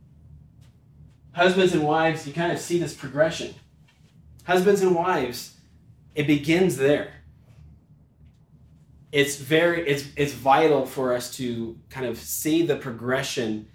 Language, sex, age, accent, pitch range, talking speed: English, male, 30-49, American, 115-145 Hz, 120 wpm